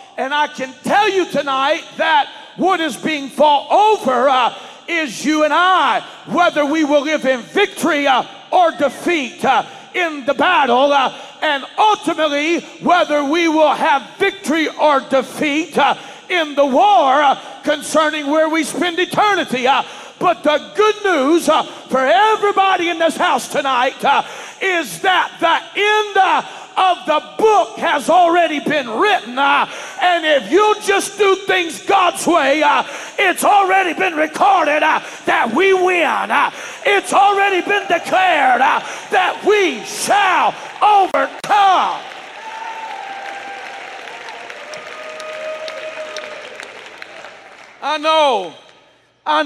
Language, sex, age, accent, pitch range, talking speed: English, male, 50-69, American, 280-380 Hz, 130 wpm